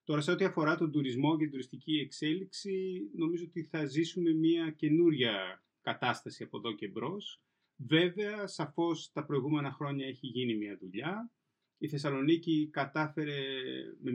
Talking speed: 145 wpm